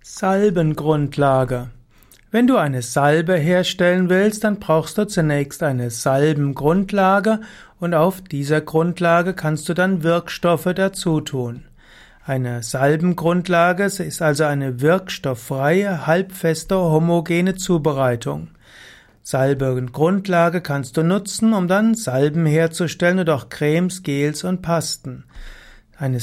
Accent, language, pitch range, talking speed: German, German, 140-180 Hz, 105 wpm